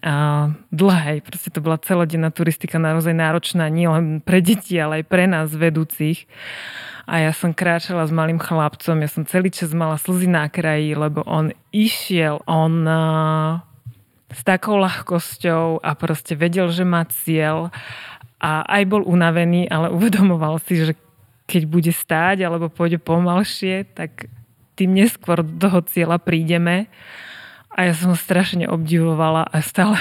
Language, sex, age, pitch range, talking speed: Slovak, female, 20-39, 160-180 Hz, 150 wpm